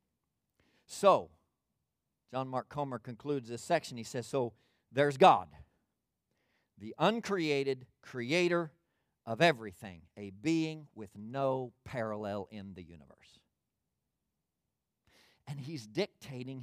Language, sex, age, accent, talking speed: English, male, 50-69, American, 100 wpm